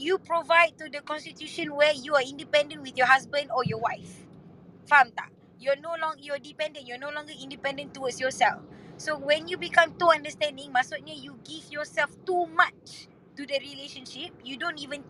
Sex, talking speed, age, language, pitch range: female, 180 wpm, 20-39, Malay, 265-330 Hz